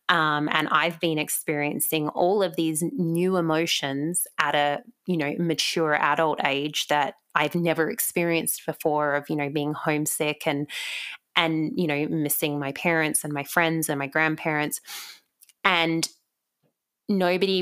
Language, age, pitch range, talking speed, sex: English, 20-39, 150-165 Hz, 145 wpm, female